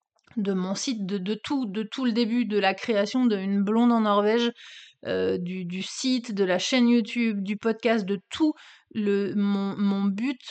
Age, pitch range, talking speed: 30-49, 200-235 Hz, 185 wpm